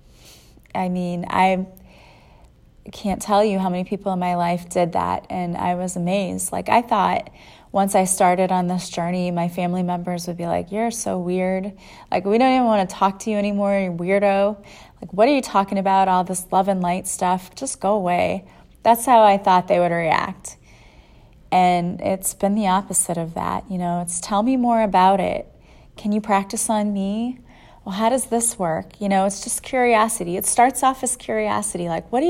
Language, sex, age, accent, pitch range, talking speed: English, female, 30-49, American, 180-230 Hz, 200 wpm